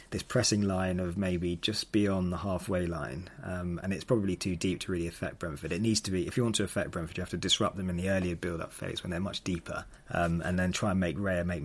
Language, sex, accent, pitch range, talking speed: English, male, British, 90-105 Hz, 270 wpm